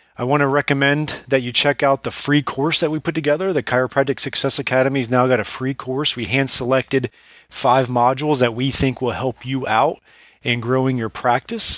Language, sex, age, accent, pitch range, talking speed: English, male, 30-49, American, 125-145 Hz, 205 wpm